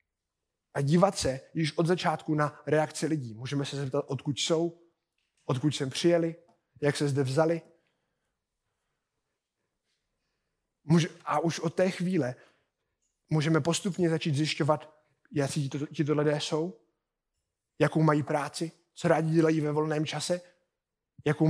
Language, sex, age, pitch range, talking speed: Czech, male, 20-39, 150-170 Hz, 130 wpm